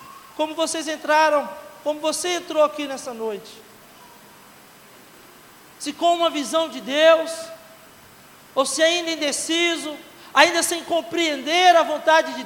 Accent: Brazilian